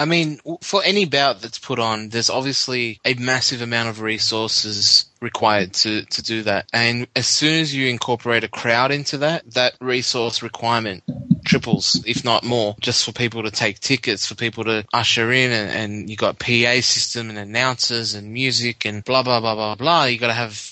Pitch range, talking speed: 110-130 Hz, 195 wpm